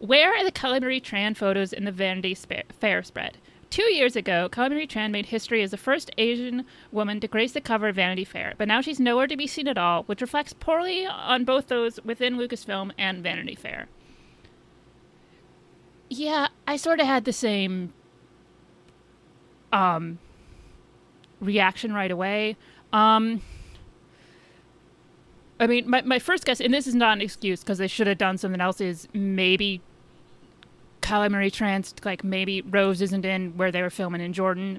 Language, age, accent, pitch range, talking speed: English, 30-49, American, 190-240 Hz, 165 wpm